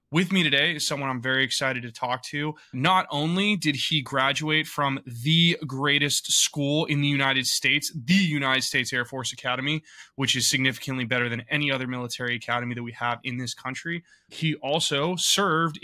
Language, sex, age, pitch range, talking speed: English, male, 20-39, 130-155 Hz, 180 wpm